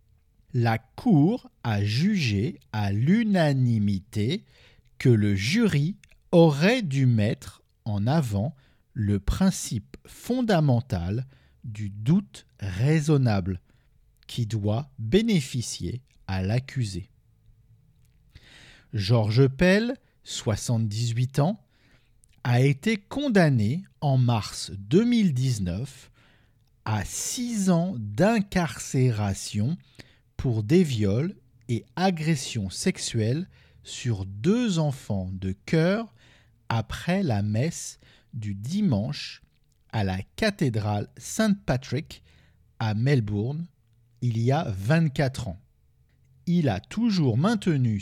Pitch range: 105-155 Hz